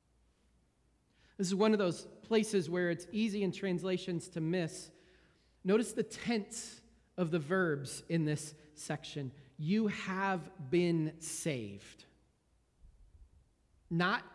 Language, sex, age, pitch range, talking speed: English, male, 40-59, 155-190 Hz, 115 wpm